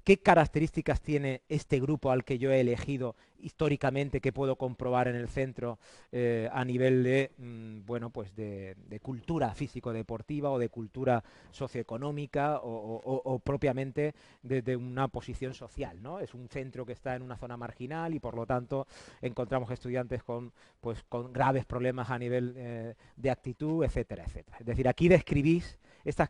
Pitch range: 120-155 Hz